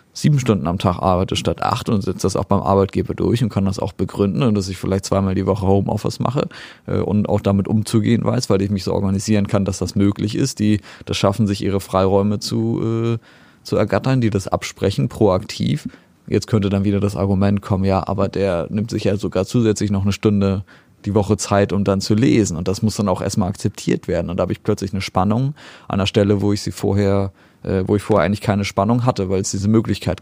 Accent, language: German, German